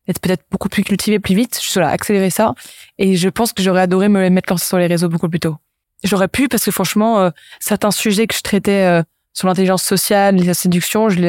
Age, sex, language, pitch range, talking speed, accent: 20-39, female, French, 175-205 Hz, 240 wpm, French